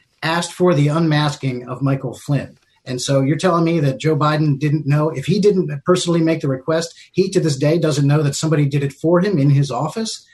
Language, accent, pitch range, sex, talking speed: English, American, 135-170 Hz, male, 225 wpm